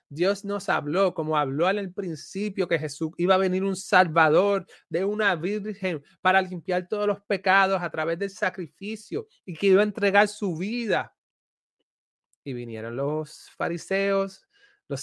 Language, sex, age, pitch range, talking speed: Spanish, male, 30-49, 145-200 Hz, 150 wpm